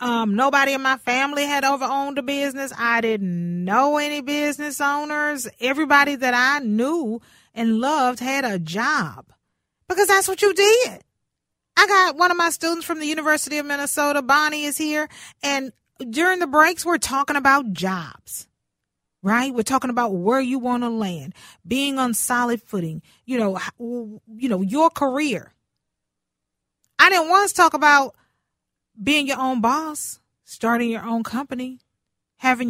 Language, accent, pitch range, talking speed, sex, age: English, American, 230-300 Hz, 155 wpm, female, 40-59